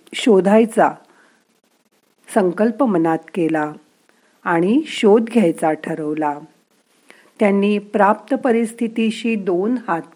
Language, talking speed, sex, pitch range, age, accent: Marathi, 75 wpm, female, 170-230 Hz, 50-69, native